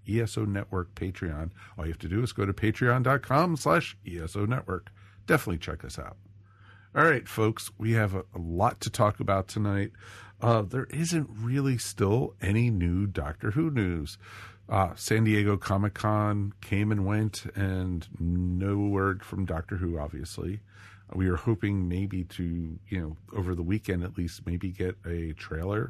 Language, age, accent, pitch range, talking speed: English, 50-69, American, 90-105 Hz, 165 wpm